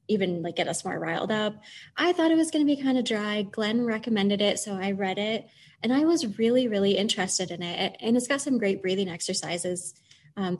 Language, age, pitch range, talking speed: English, 20-39, 185-225 Hz, 225 wpm